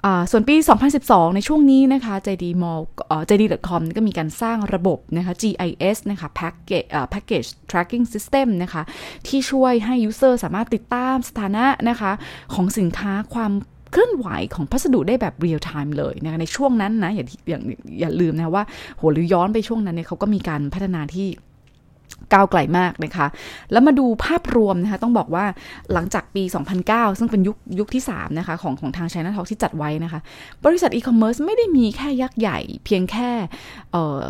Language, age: Thai, 20-39